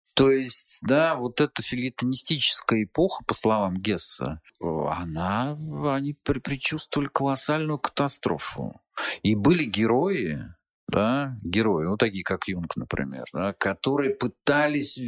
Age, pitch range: 40-59, 95-125 Hz